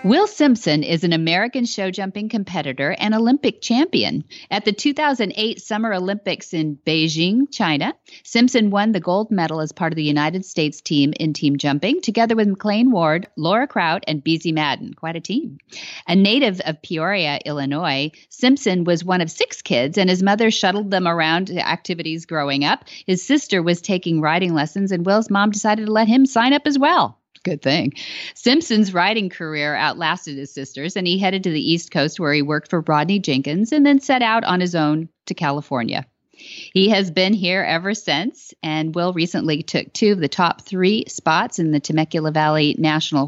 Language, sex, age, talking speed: English, female, 40-59, 185 wpm